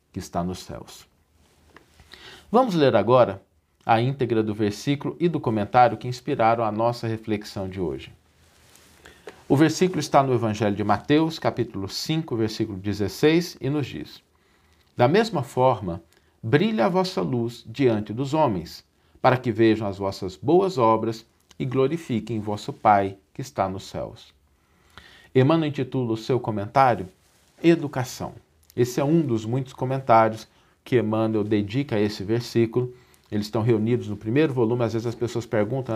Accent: Brazilian